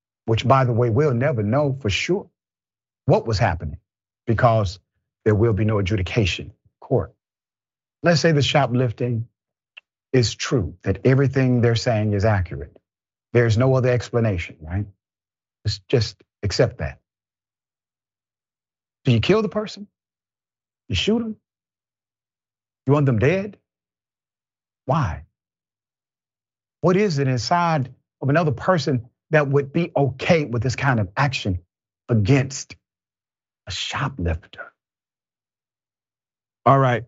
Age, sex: 50-69, male